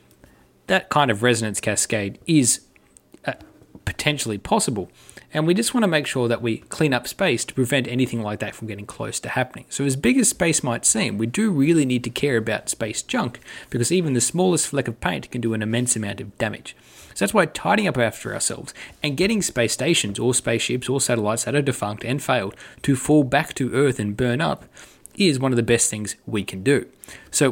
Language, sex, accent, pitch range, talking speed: English, male, Australian, 110-145 Hz, 215 wpm